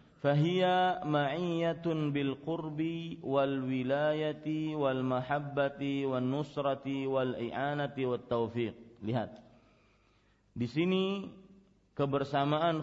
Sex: male